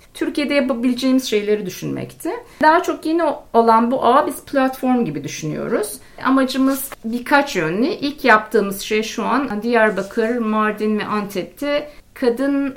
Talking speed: 125 wpm